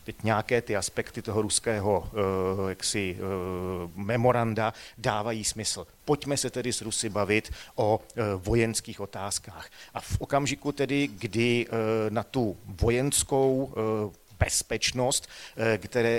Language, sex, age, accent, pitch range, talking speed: Czech, male, 40-59, native, 100-120 Hz, 110 wpm